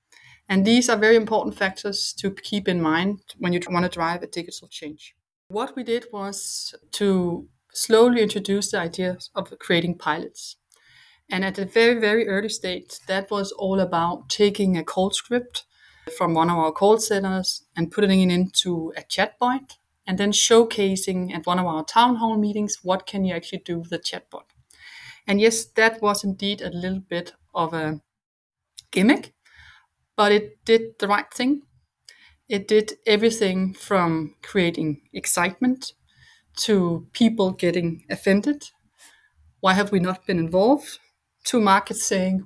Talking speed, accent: 155 wpm, Danish